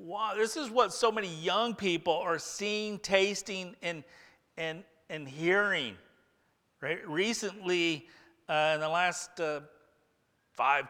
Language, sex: English, male